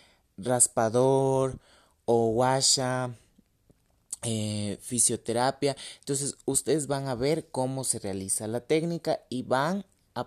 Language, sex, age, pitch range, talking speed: Spanish, male, 30-49, 105-145 Hz, 105 wpm